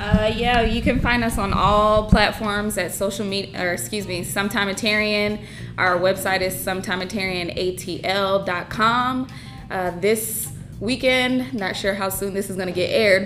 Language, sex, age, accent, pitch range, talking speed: English, female, 20-39, American, 195-235 Hz, 145 wpm